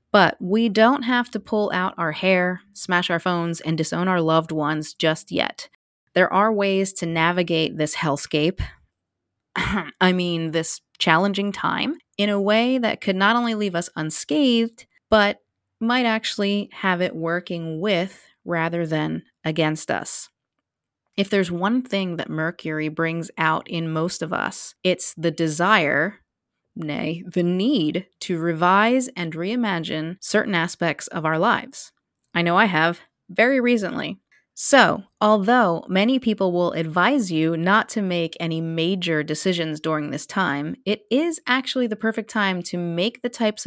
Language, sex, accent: English, female, American